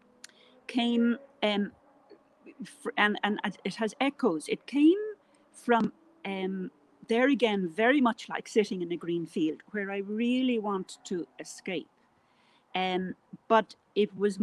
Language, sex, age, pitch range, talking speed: English, female, 40-59, 190-245 Hz, 135 wpm